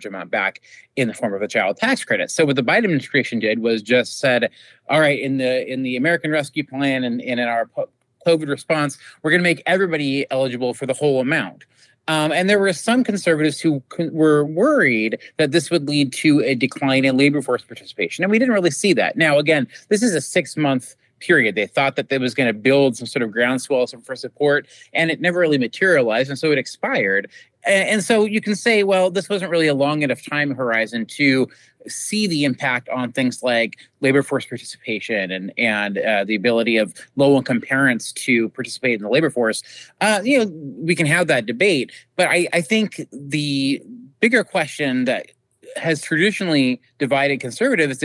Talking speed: 200 wpm